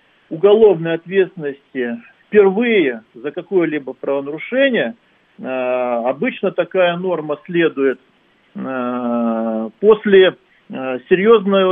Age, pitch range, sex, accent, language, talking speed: 50-69, 140-200 Hz, male, native, Russian, 60 wpm